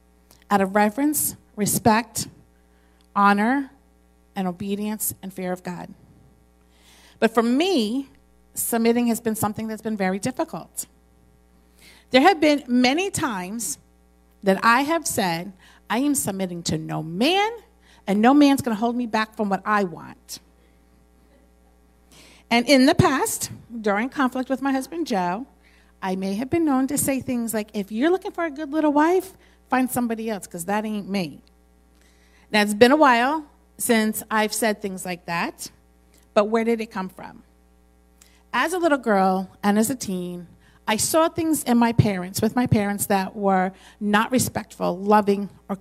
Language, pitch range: English, 165-250 Hz